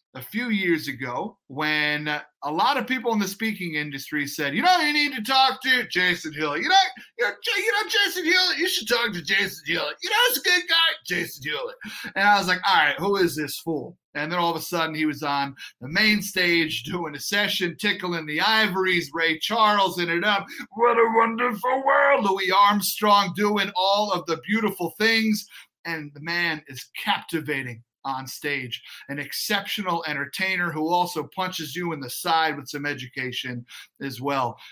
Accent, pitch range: American, 145-210 Hz